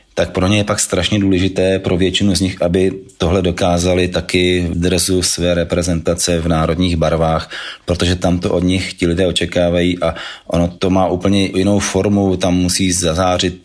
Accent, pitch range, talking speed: native, 85-95 Hz, 175 wpm